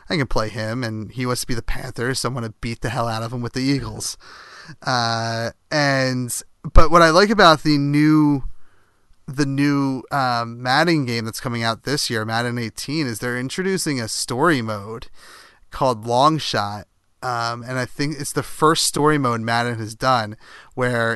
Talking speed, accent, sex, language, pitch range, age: 185 wpm, American, male, English, 115-135 Hz, 30-49